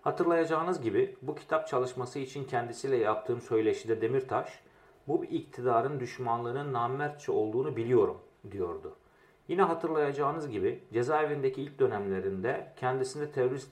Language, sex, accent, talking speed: Turkish, male, native, 115 wpm